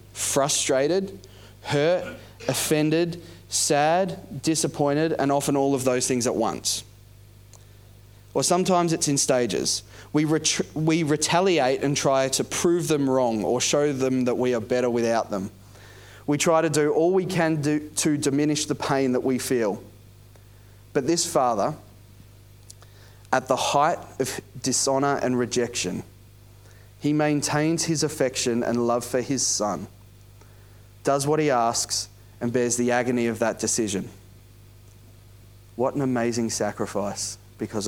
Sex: male